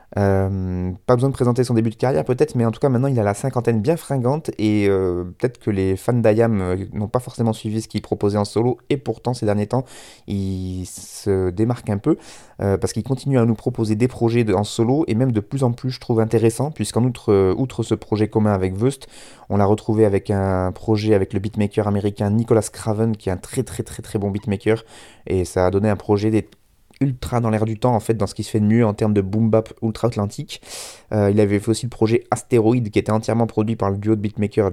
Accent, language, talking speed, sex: French, French, 245 wpm, male